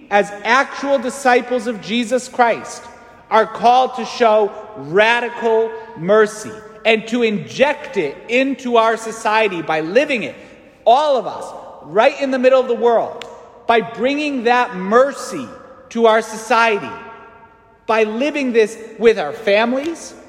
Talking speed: 135 wpm